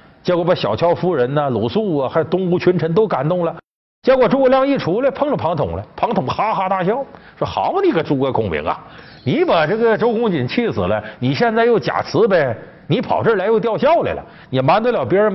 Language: Chinese